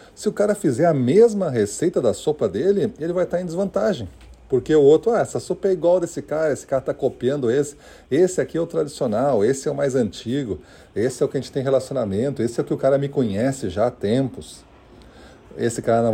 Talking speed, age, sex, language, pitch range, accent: 230 wpm, 40-59, male, Portuguese, 105-155 Hz, Brazilian